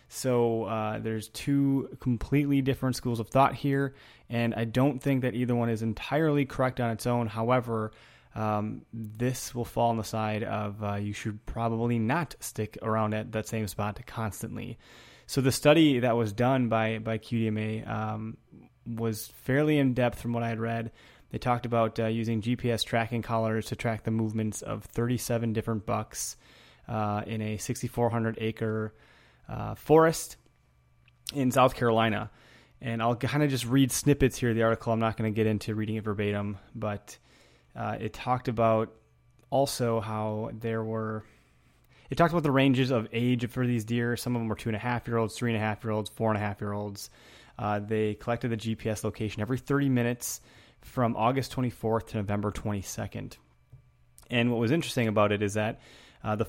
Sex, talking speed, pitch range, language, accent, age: male, 185 wpm, 110-125 Hz, English, American, 20-39